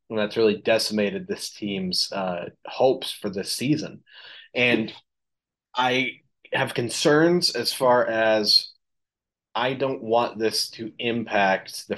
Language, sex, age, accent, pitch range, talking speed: English, male, 20-39, American, 100-115 Hz, 125 wpm